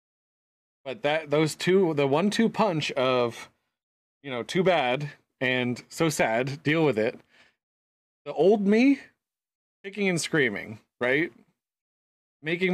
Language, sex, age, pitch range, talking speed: English, male, 30-49, 125-160 Hz, 125 wpm